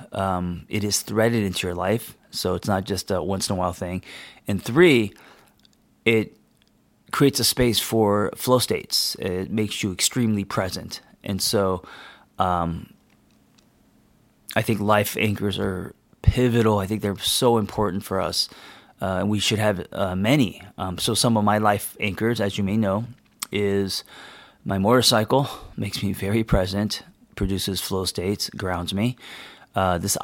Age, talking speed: 30-49, 150 wpm